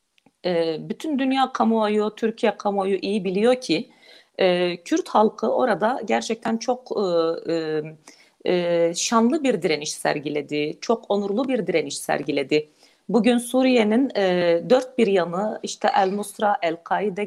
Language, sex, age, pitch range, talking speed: Turkish, female, 40-59, 175-240 Hz, 105 wpm